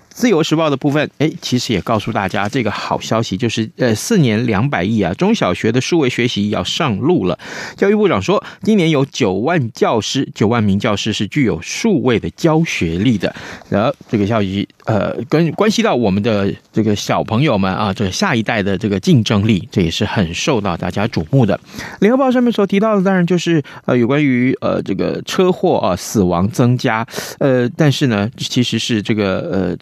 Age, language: 30-49, Chinese